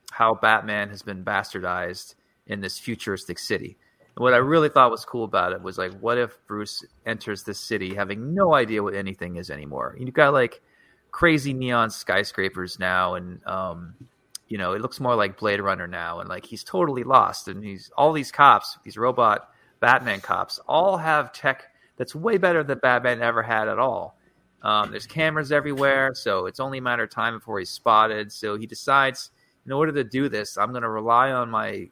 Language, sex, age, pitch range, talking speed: English, male, 30-49, 100-130 Hz, 195 wpm